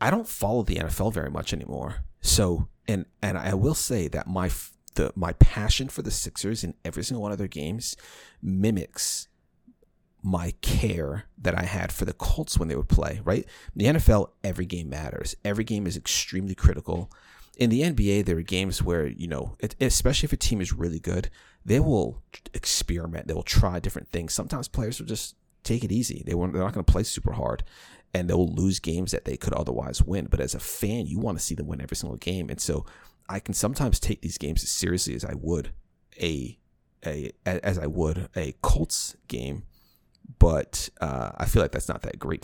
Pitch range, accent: 80-105 Hz, American